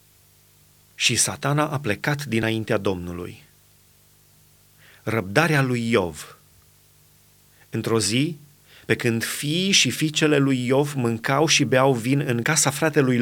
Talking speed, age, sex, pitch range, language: 115 wpm, 30-49, male, 140-180 Hz, Romanian